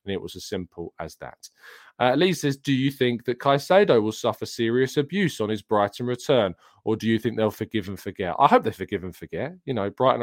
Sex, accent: male, British